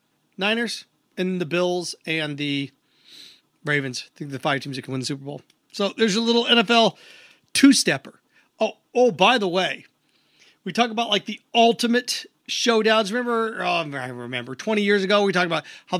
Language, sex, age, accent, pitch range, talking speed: English, male, 40-59, American, 175-220 Hz, 175 wpm